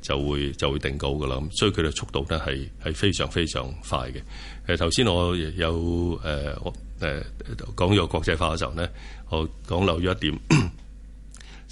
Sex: male